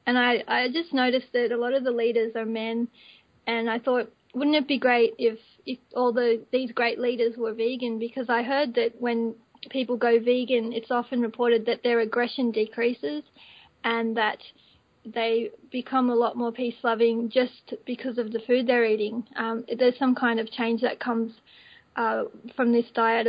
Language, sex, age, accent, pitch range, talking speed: English, female, 20-39, Australian, 230-255 Hz, 185 wpm